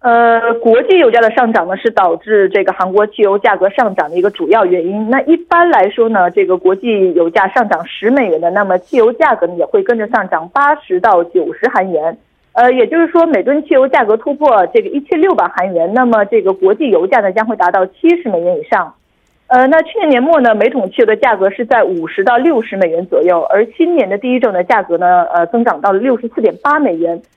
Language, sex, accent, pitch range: Korean, female, Chinese, 195-300 Hz